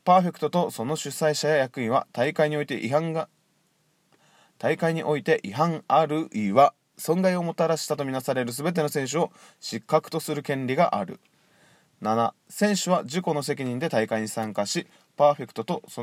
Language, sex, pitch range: Japanese, male, 135-170 Hz